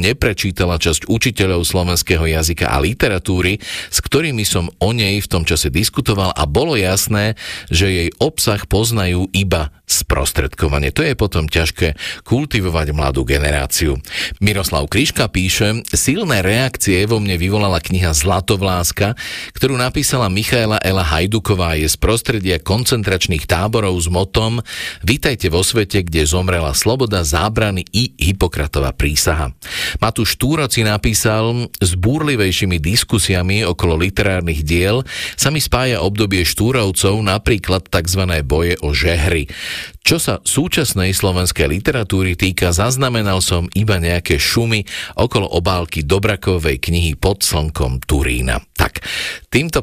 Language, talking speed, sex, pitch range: Slovak, 125 wpm, male, 85-110 Hz